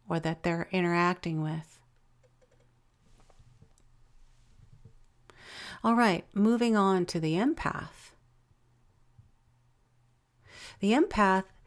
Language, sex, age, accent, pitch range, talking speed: English, female, 50-69, American, 125-190 Hz, 70 wpm